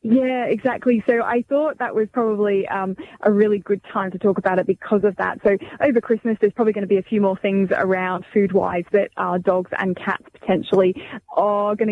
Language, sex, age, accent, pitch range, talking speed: English, female, 10-29, British, 190-225 Hz, 215 wpm